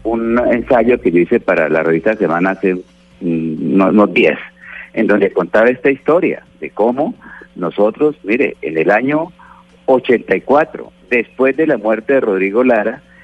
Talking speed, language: 145 wpm, Spanish